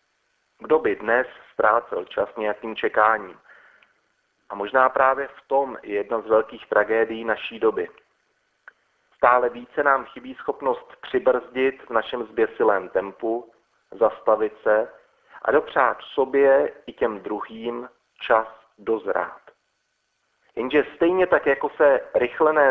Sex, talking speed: male, 120 wpm